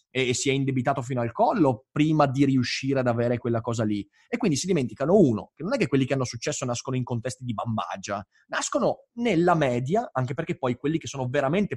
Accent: native